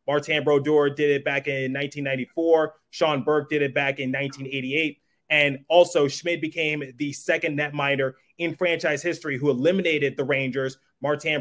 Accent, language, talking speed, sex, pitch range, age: American, English, 160 wpm, male, 140-165 Hz, 20-39